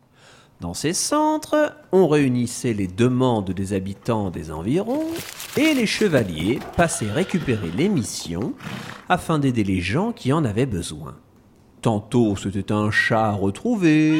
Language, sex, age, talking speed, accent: French, male, 40-59, 135 wpm, French